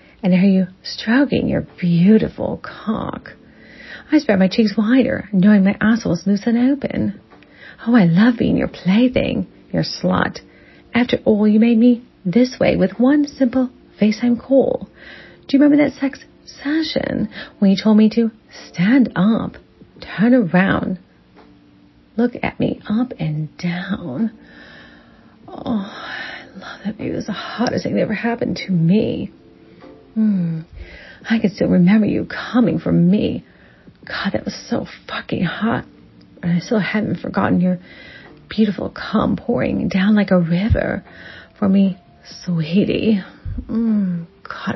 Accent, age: American, 40-59